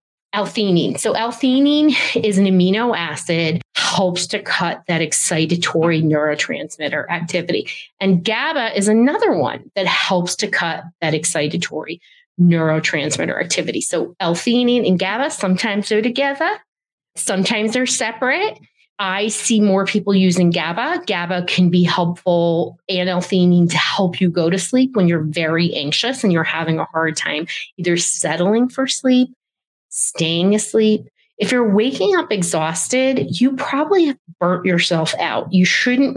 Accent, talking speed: American, 140 wpm